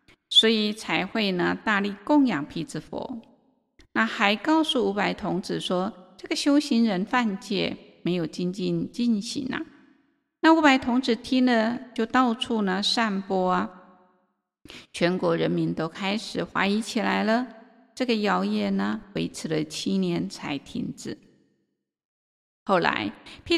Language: Chinese